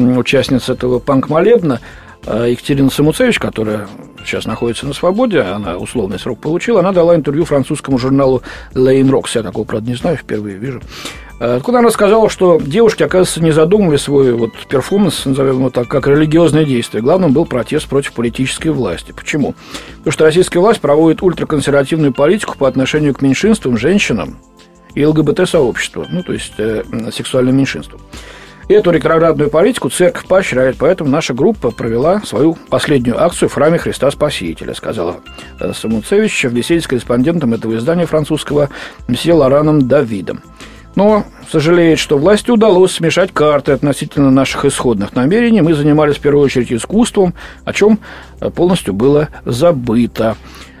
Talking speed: 140 wpm